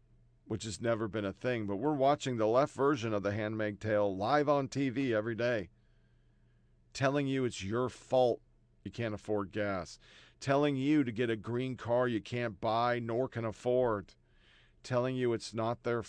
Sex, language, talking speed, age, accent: male, English, 180 wpm, 50-69, American